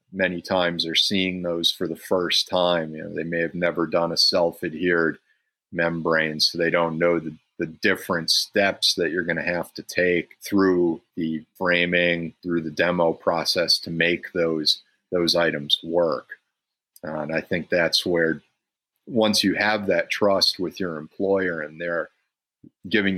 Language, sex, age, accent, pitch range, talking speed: English, male, 40-59, American, 80-90 Hz, 165 wpm